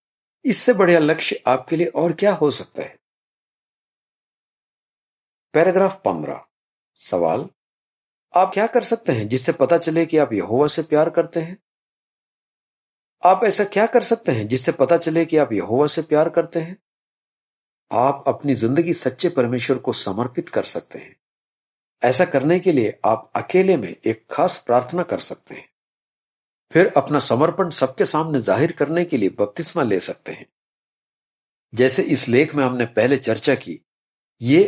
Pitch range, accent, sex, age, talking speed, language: 130-180 Hz, native, male, 50-69, 155 wpm, Hindi